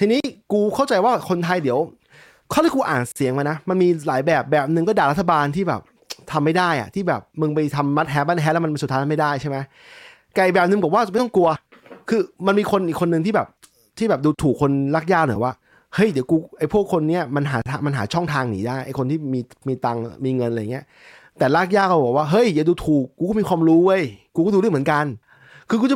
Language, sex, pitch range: English, male, 140-190 Hz